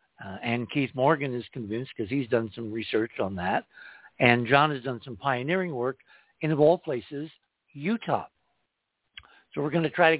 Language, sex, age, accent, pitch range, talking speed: English, male, 60-79, American, 115-150 Hz, 180 wpm